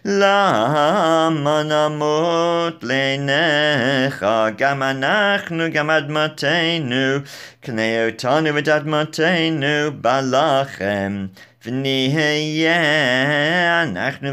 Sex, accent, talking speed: male, British, 65 wpm